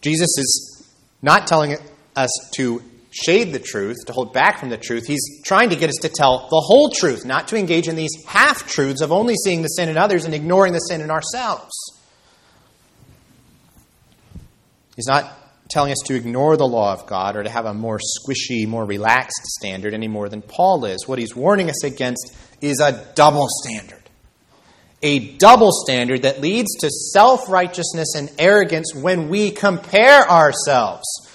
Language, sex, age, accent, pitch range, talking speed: English, male, 30-49, American, 115-160 Hz, 170 wpm